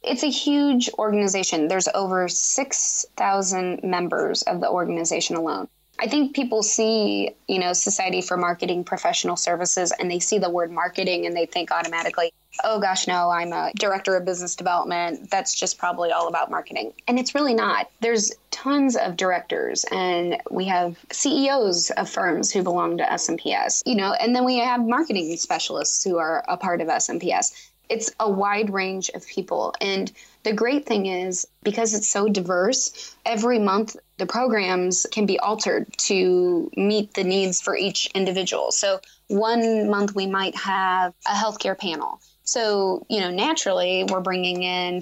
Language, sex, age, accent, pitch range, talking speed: English, female, 20-39, American, 180-225 Hz, 165 wpm